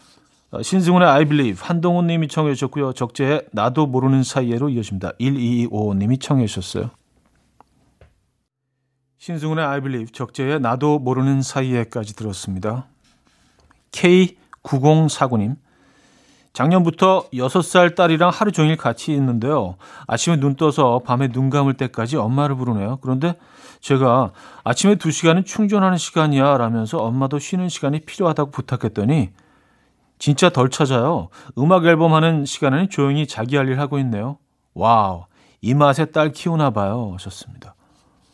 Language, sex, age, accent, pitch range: Korean, male, 40-59, native, 120-155 Hz